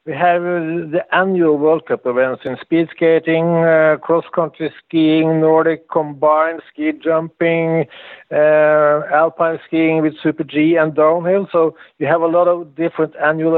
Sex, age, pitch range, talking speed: male, 50-69, 150-170 Hz, 145 wpm